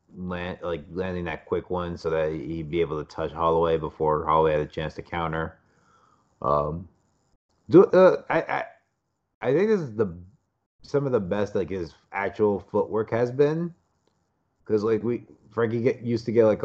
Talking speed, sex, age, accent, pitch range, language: 180 wpm, male, 30-49, American, 80-100 Hz, English